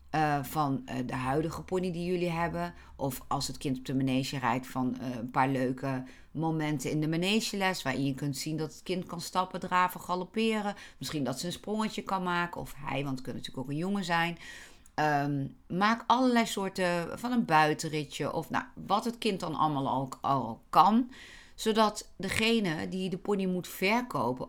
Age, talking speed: 40-59, 190 wpm